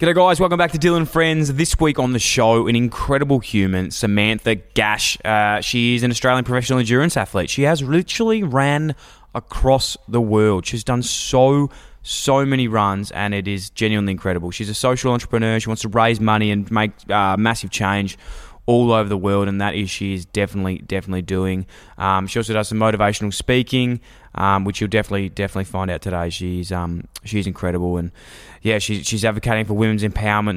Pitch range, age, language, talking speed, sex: 95-115 Hz, 20-39, English, 190 wpm, male